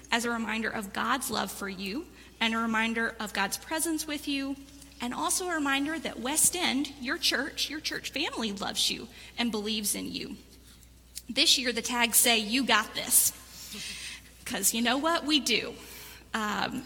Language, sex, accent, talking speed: English, female, American, 175 wpm